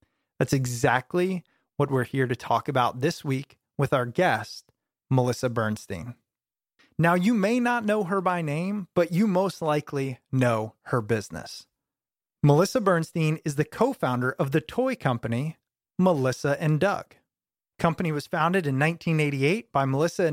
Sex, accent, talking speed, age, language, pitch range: male, American, 145 wpm, 30-49, English, 135-180 Hz